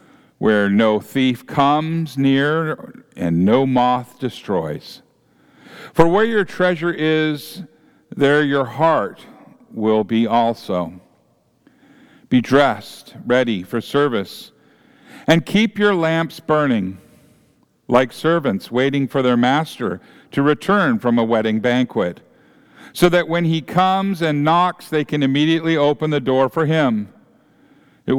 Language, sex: English, male